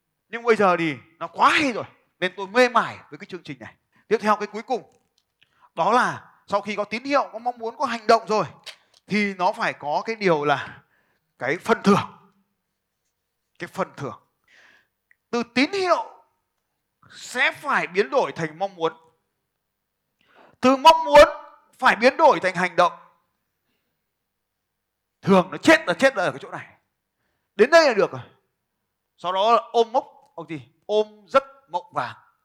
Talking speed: 175 wpm